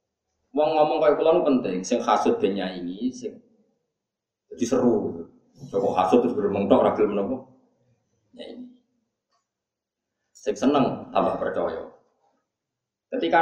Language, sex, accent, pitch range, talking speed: Indonesian, male, native, 125-200 Hz, 100 wpm